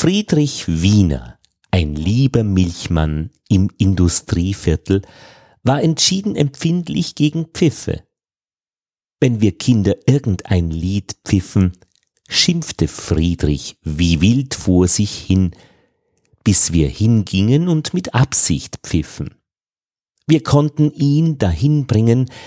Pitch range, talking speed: 85-140 Hz, 100 wpm